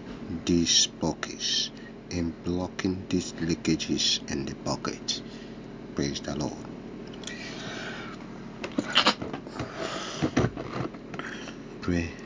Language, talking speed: English, 65 wpm